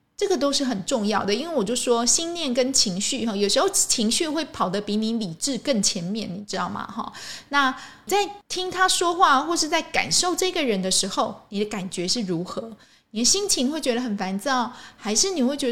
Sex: female